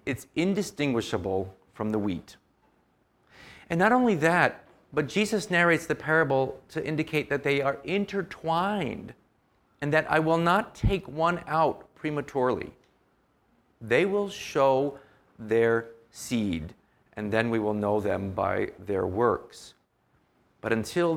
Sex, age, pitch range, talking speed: male, 50-69, 105-150 Hz, 130 wpm